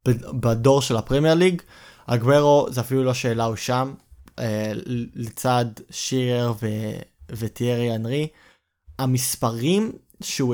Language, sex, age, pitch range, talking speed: Hebrew, male, 20-39, 115-140 Hz, 100 wpm